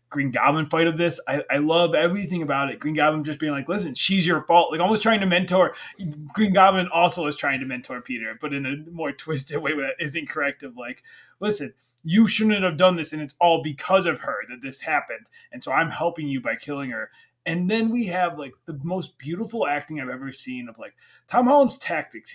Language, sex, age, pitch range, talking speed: English, male, 20-39, 150-190 Hz, 225 wpm